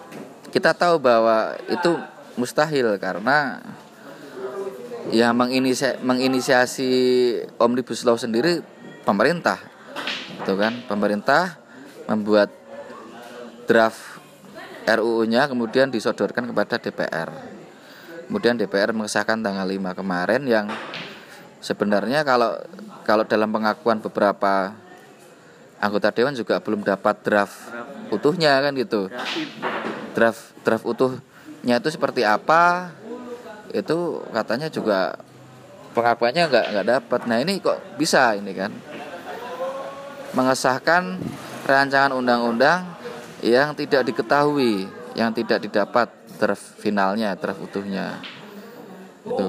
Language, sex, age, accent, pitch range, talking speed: Indonesian, male, 20-39, native, 110-140 Hz, 95 wpm